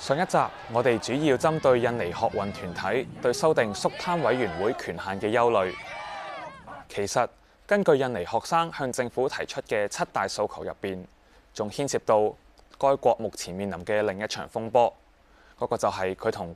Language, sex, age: Chinese, male, 20-39